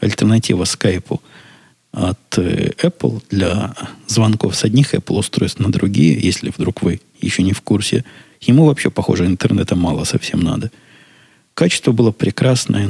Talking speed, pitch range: 135 wpm, 95-115 Hz